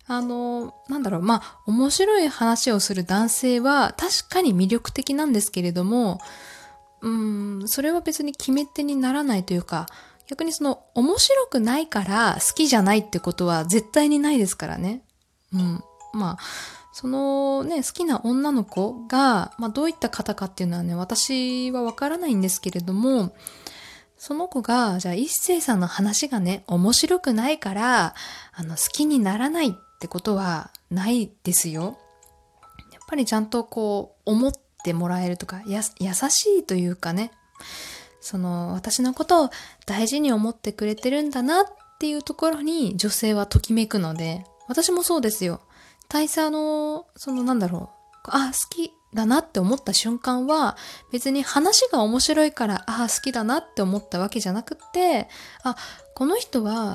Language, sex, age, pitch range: Japanese, female, 20-39, 200-290 Hz